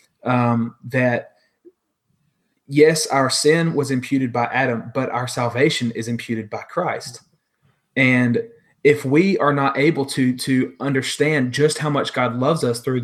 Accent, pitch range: American, 120-145 Hz